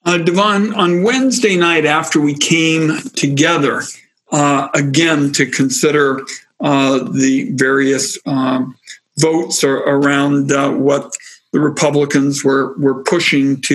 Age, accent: 60-79, American